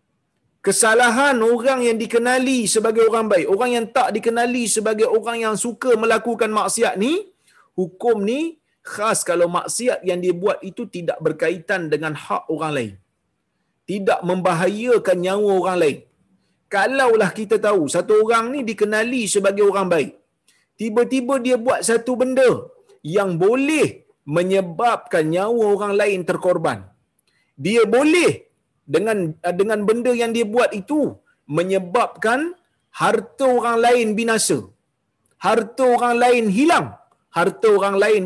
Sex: male